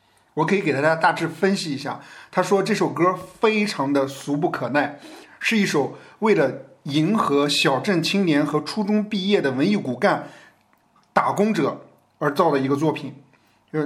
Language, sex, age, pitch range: Chinese, male, 50-69, 140-185 Hz